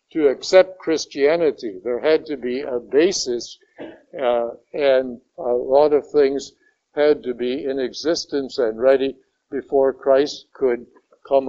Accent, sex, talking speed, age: American, male, 135 wpm, 60-79